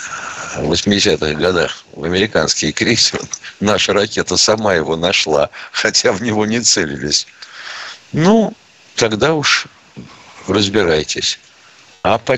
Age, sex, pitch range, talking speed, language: 60-79, male, 85-110 Hz, 105 wpm, Russian